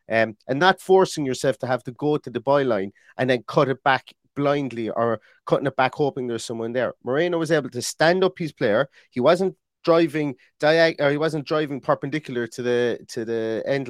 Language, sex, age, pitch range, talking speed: English, male, 30-49, 120-155 Hz, 205 wpm